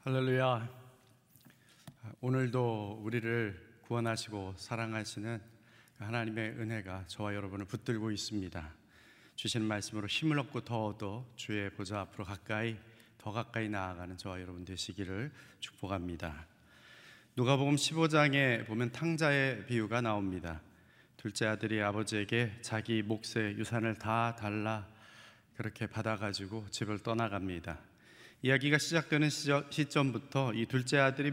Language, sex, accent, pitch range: Korean, male, native, 105-125 Hz